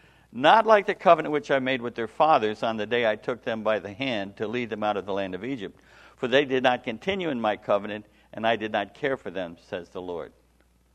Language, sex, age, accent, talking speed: English, male, 60-79, American, 250 wpm